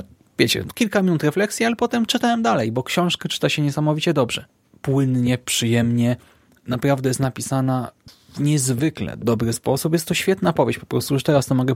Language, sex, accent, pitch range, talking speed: Polish, male, native, 125-165 Hz, 170 wpm